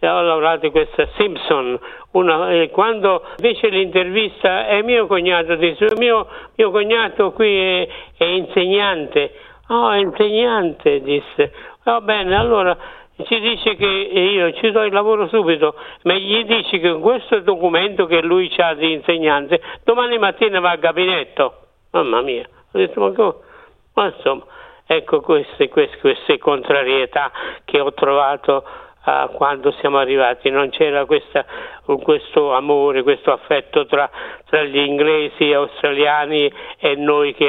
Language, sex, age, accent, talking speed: Italian, male, 60-79, native, 135 wpm